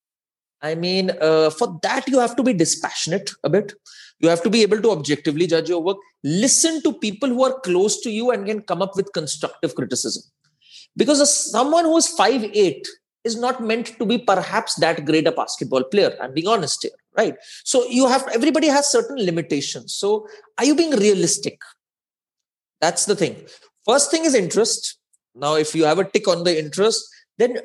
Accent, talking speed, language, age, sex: native, 195 wpm, Hindi, 30-49, male